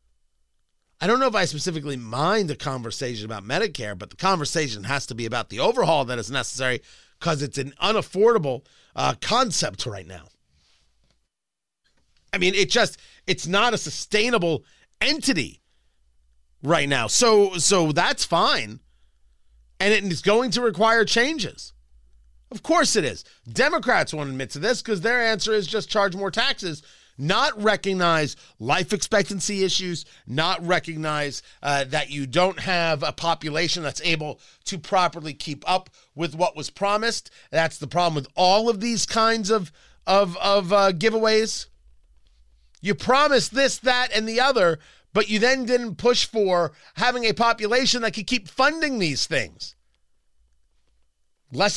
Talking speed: 150 wpm